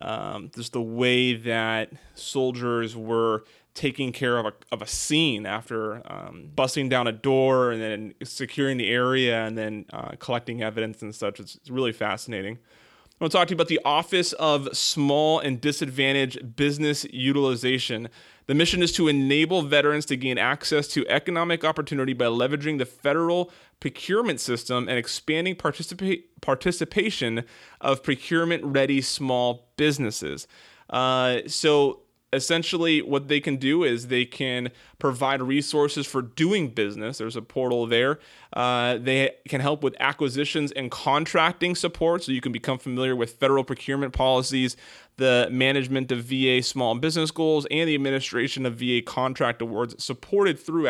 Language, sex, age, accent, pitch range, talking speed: English, male, 30-49, American, 120-150 Hz, 155 wpm